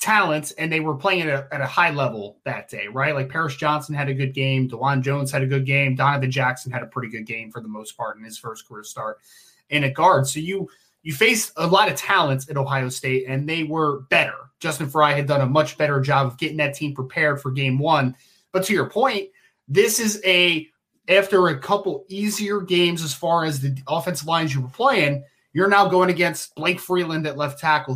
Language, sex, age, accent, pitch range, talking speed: English, male, 20-39, American, 135-180 Hz, 230 wpm